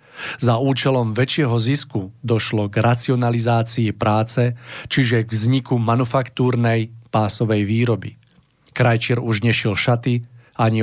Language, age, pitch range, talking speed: Czech, 40-59, 110-125 Hz, 105 wpm